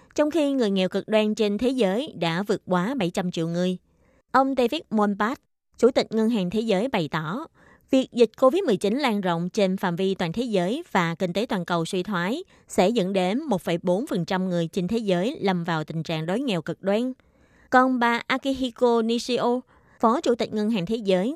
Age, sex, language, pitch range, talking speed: 20-39, female, Vietnamese, 180-240 Hz, 200 wpm